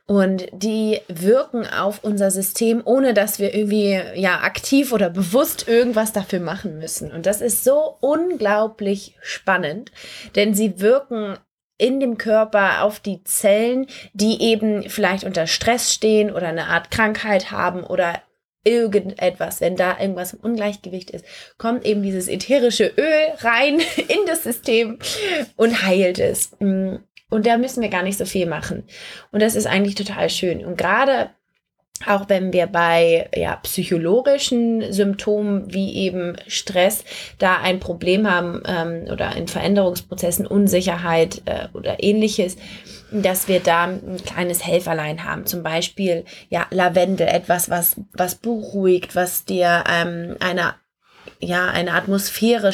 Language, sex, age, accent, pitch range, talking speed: German, female, 20-39, German, 180-220 Hz, 140 wpm